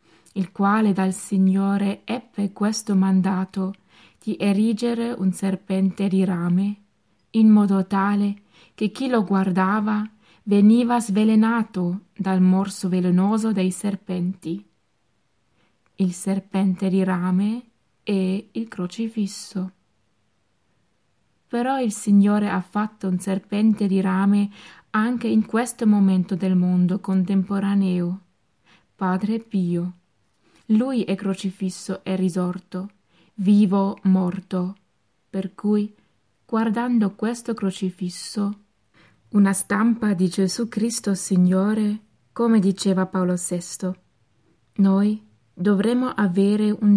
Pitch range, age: 185-210 Hz, 20-39